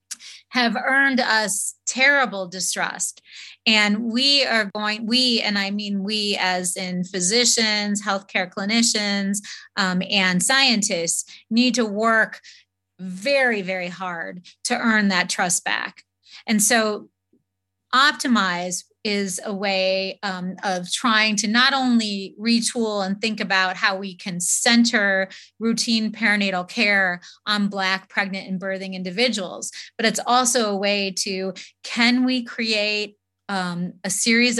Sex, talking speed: female, 130 wpm